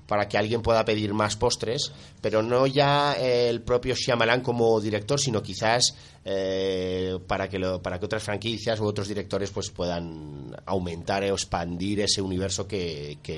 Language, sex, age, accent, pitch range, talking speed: Spanish, male, 30-49, Spanish, 85-105 Hz, 175 wpm